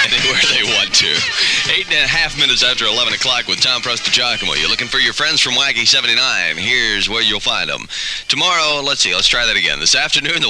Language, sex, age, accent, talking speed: English, male, 30-49, American, 225 wpm